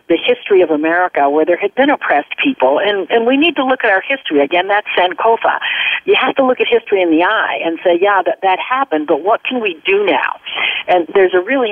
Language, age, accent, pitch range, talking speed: English, 50-69, American, 170-240 Hz, 240 wpm